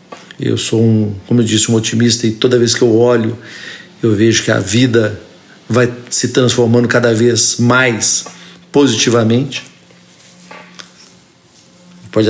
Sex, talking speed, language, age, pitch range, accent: male, 130 wpm, Portuguese, 50-69, 115-135 Hz, Brazilian